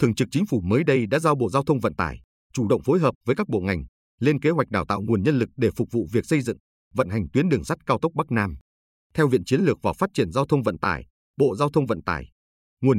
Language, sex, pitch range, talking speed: Vietnamese, male, 100-140 Hz, 280 wpm